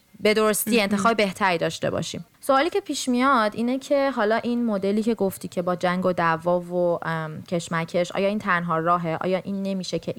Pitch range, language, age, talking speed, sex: 175-225 Hz, Persian, 30-49, 190 wpm, female